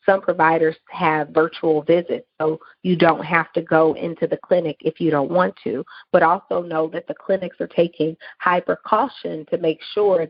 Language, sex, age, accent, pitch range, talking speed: English, female, 40-59, American, 155-170 Hz, 185 wpm